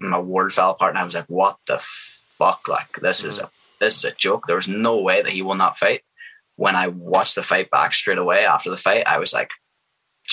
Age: 10-29